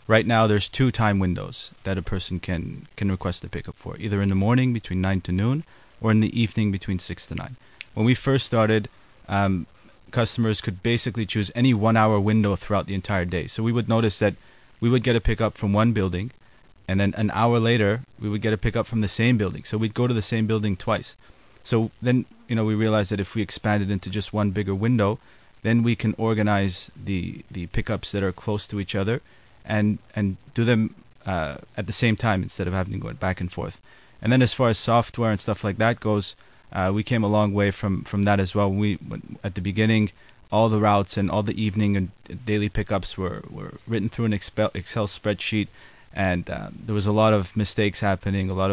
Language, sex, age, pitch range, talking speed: English, male, 30-49, 100-115 Hz, 225 wpm